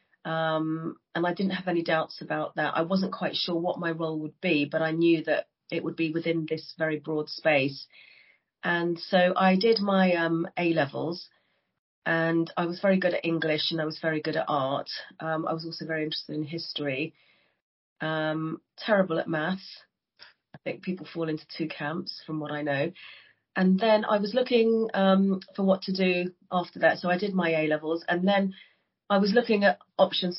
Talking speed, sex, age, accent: 195 wpm, female, 40-59, British